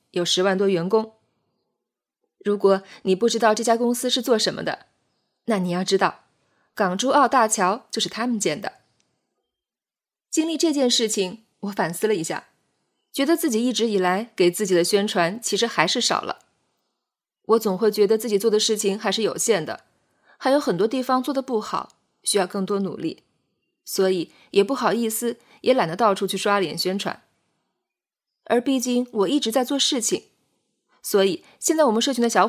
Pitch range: 195-250 Hz